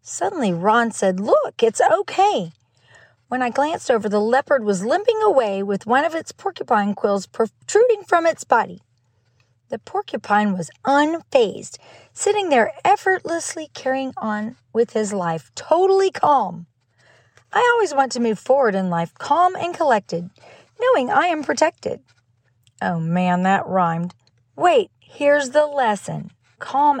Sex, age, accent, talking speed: female, 40-59, American, 140 wpm